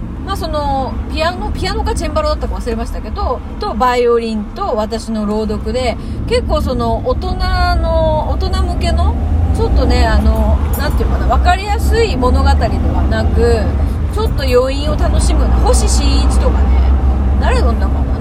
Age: 30-49